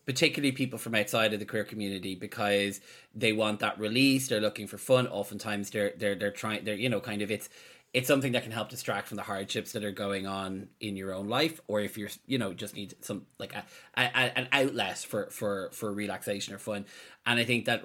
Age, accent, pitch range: 30-49, Irish, 100-120 Hz